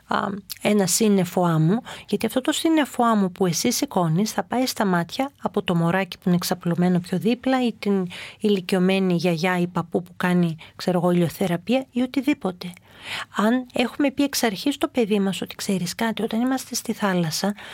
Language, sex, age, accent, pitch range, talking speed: Greek, female, 40-59, native, 180-245 Hz, 170 wpm